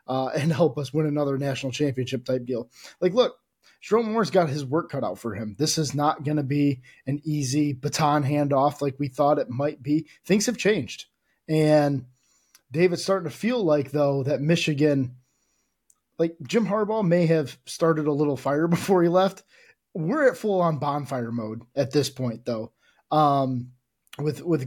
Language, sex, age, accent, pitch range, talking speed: English, male, 20-39, American, 140-170 Hz, 180 wpm